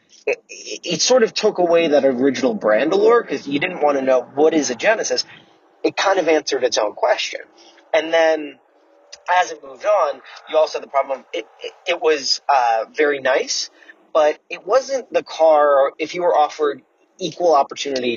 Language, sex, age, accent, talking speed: English, male, 30-49, American, 190 wpm